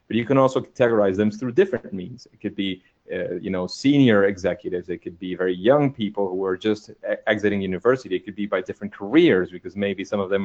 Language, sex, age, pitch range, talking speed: English, male, 30-49, 100-125 Hz, 230 wpm